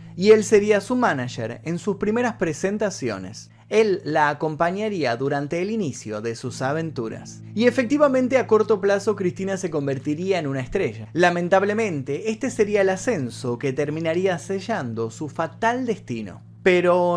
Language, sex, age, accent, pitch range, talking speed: Spanish, male, 30-49, Argentinian, 130-205 Hz, 145 wpm